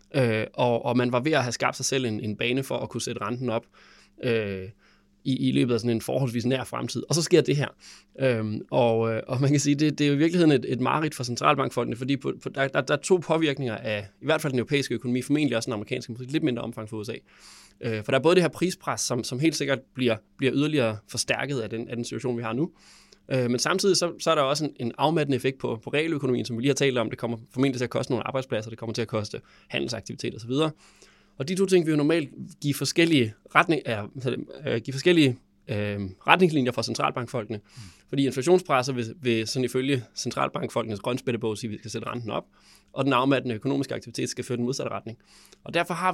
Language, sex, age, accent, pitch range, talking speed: Danish, male, 20-39, native, 115-145 Hz, 230 wpm